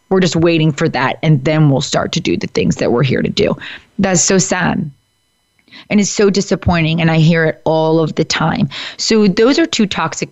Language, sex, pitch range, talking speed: English, female, 160-215 Hz, 220 wpm